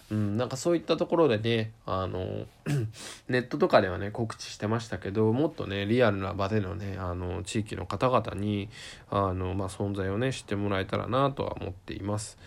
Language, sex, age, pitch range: Japanese, male, 20-39, 100-120 Hz